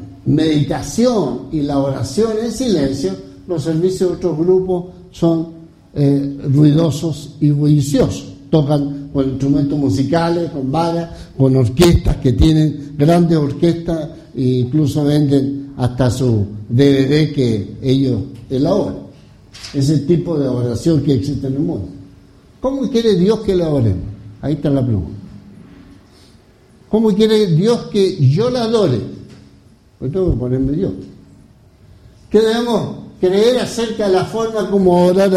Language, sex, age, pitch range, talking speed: English, male, 60-79, 130-185 Hz, 130 wpm